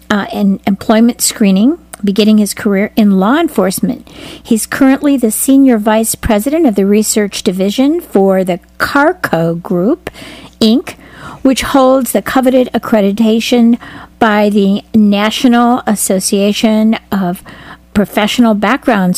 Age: 50-69